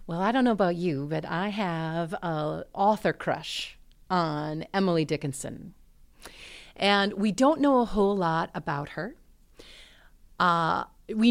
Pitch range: 160-210 Hz